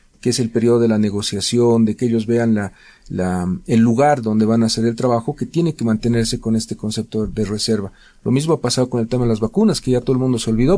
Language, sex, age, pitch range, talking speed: Spanish, male, 40-59, 115-135 Hz, 260 wpm